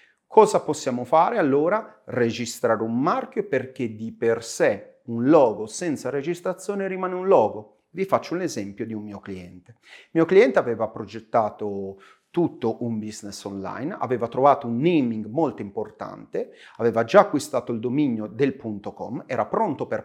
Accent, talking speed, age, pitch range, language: native, 155 wpm, 40-59, 110-180 Hz, Italian